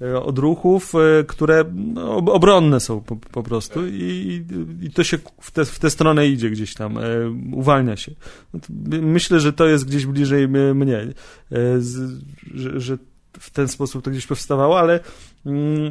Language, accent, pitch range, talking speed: Polish, native, 130-155 Hz, 130 wpm